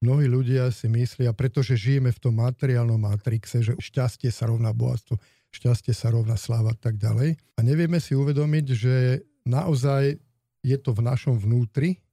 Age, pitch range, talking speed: 50-69, 115-135 Hz, 165 wpm